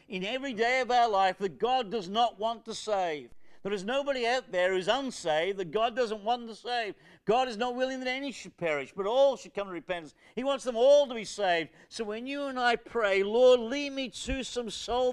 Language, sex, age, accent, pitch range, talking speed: English, male, 50-69, British, 160-235 Hz, 235 wpm